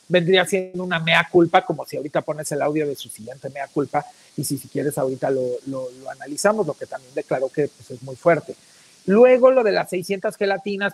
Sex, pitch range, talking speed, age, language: male, 160-200 Hz, 210 wpm, 50-69, Spanish